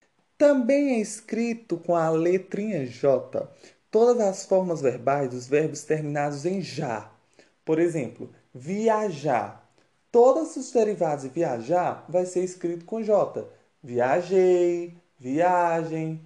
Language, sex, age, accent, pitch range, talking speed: Portuguese, male, 20-39, Brazilian, 145-210 Hz, 115 wpm